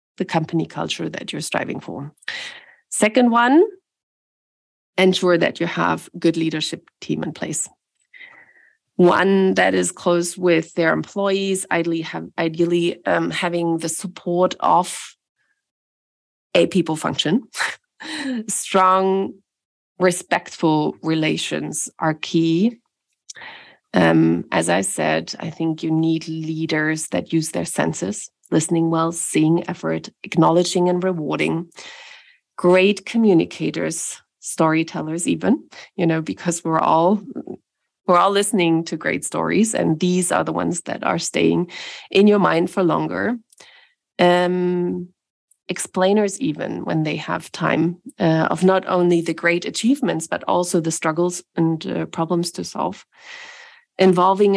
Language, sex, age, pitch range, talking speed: English, female, 30-49, 165-200 Hz, 125 wpm